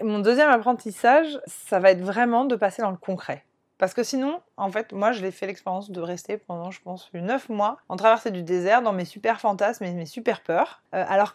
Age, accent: 20-39, French